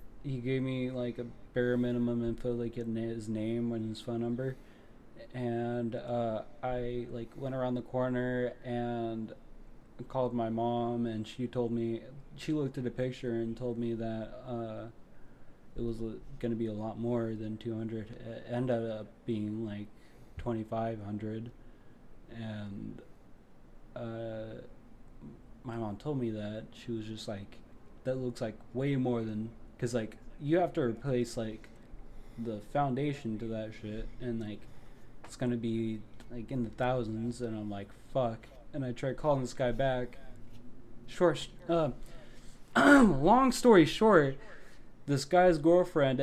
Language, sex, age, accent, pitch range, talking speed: English, male, 20-39, American, 115-130 Hz, 150 wpm